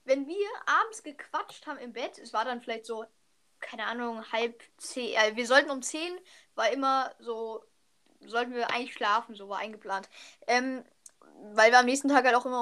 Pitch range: 240-310 Hz